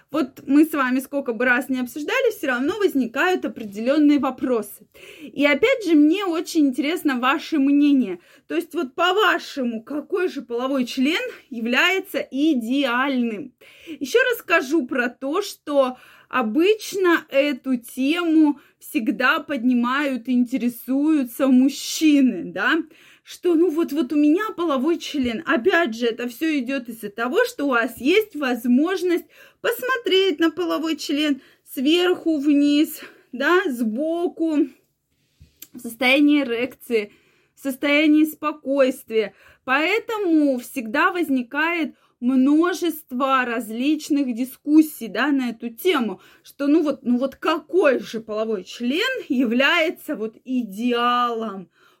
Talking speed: 115 wpm